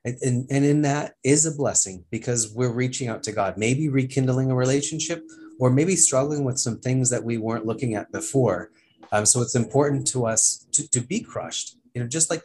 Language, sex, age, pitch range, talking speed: English, male, 30-49, 110-135 Hz, 205 wpm